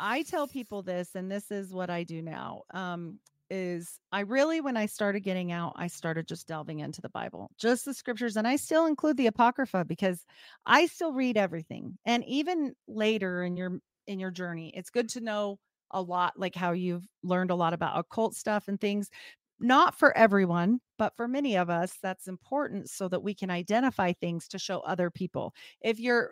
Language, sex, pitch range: English, female, 185-235 Hz